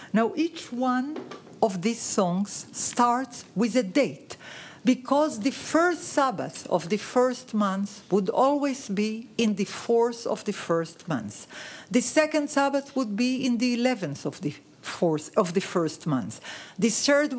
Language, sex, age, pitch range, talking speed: English, female, 50-69, 200-265 Hz, 155 wpm